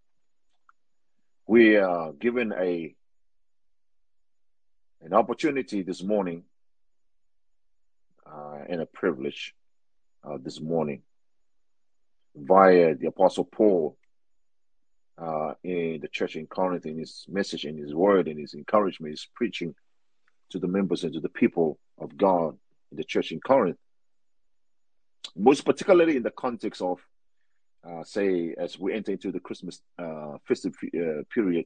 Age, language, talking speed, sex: 40-59, English, 130 wpm, male